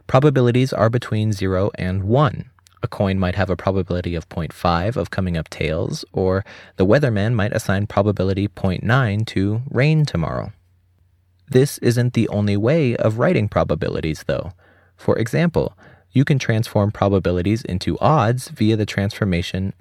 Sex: male